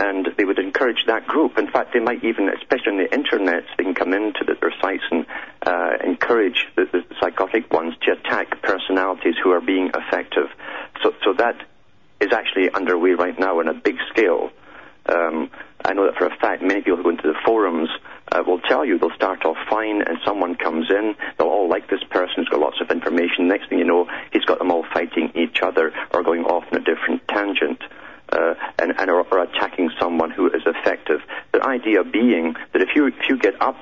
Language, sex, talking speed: English, male, 215 wpm